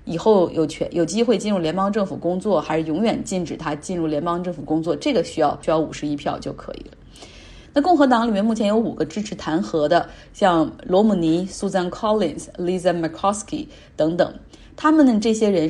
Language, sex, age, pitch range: Chinese, female, 30-49, 170-225 Hz